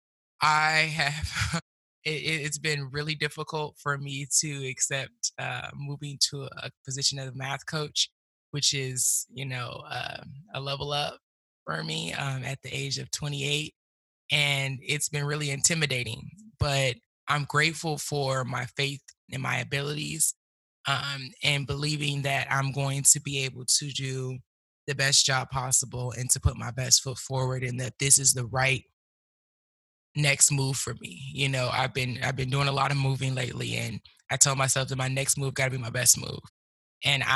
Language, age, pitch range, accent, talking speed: English, 20-39, 130-145 Hz, American, 175 wpm